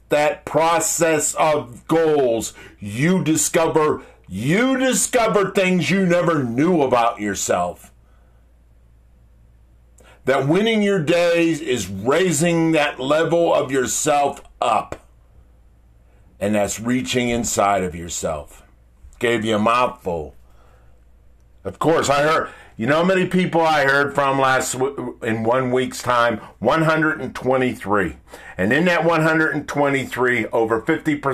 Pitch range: 100-165 Hz